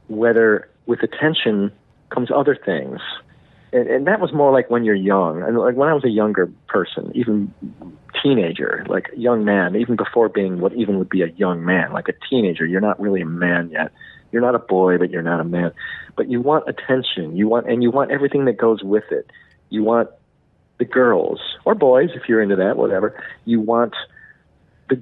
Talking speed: 205 wpm